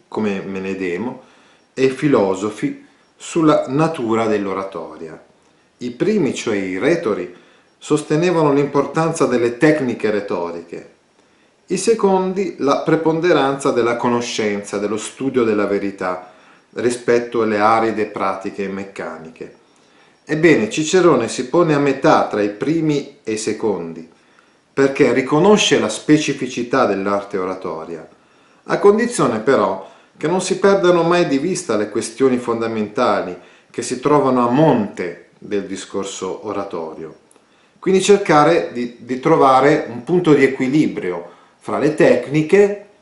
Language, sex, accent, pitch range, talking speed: Italian, male, native, 100-155 Hz, 120 wpm